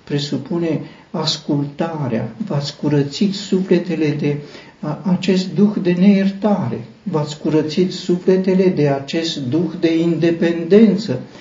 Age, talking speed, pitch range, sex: 60-79, 95 wpm, 135-185 Hz, male